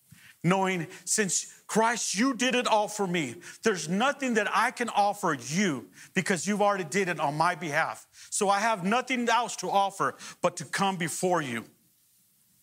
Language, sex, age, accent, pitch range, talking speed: English, male, 40-59, American, 165-215 Hz, 170 wpm